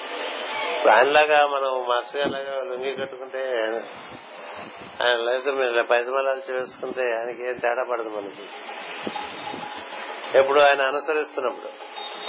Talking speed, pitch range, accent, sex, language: 90 wpm, 130-150 Hz, native, male, Telugu